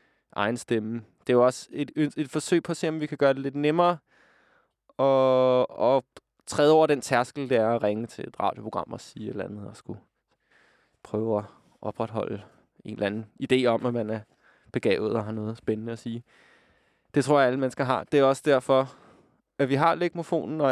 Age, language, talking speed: 20-39, Danish, 205 wpm